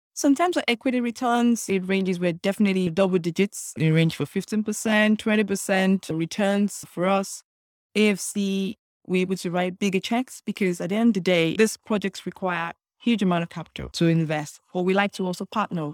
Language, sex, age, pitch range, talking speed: English, female, 20-39, 165-200 Hz, 185 wpm